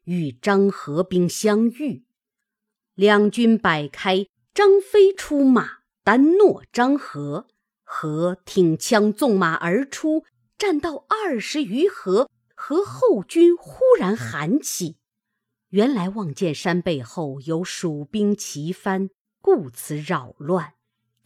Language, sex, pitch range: Chinese, female, 165-275 Hz